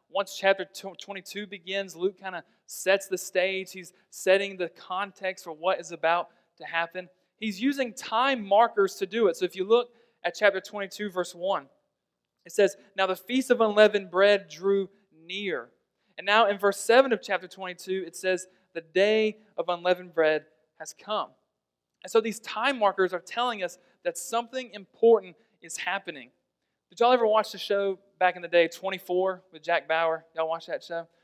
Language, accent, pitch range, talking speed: English, American, 180-215 Hz, 180 wpm